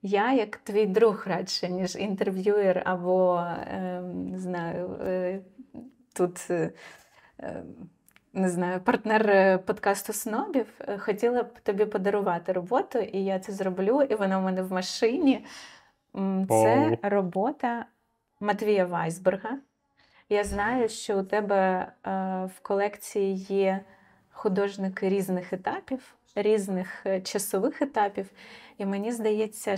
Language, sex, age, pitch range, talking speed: Ukrainian, female, 20-39, 185-220 Hz, 105 wpm